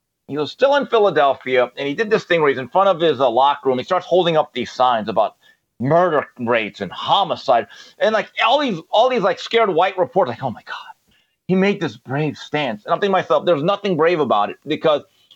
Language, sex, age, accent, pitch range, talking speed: English, male, 40-59, American, 155-215 Hz, 230 wpm